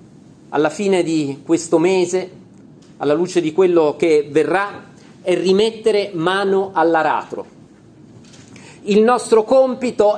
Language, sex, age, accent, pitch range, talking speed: Italian, male, 40-59, native, 175-225 Hz, 105 wpm